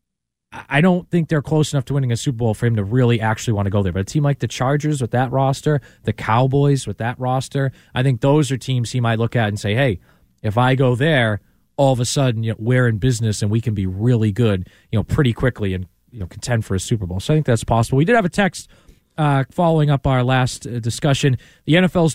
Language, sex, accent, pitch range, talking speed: English, male, American, 120-160 Hz, 260 wpm